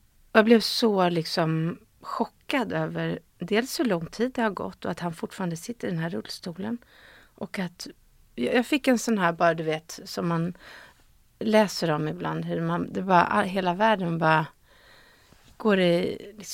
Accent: native